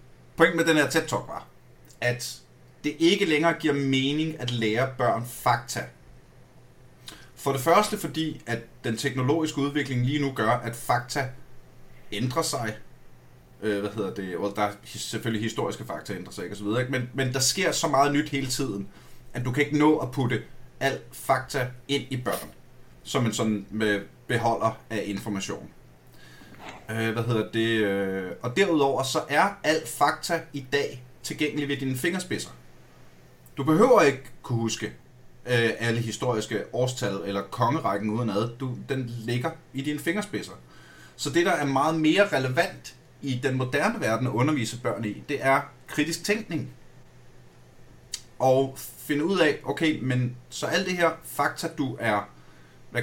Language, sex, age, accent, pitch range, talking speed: Danish, male, 30-49, native, 115-145 Hz, 155 wpm